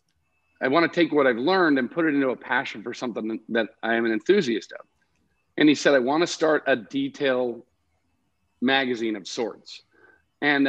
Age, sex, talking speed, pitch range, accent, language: 50-69, male, 190 wpm, 130-160 Hz, American, English